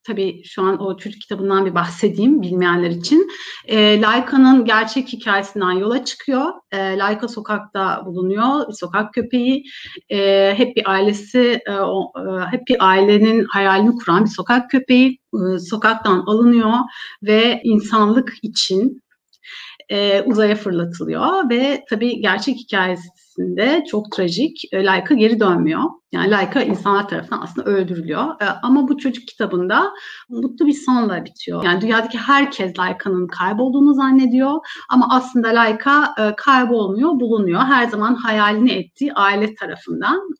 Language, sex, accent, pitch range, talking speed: Turkish, female, native, 195-255 Hz, 130 wpm